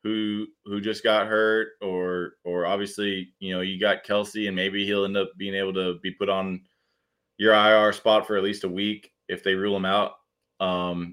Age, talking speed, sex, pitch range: 20-39, 205 wpm, male, 95-110 Hz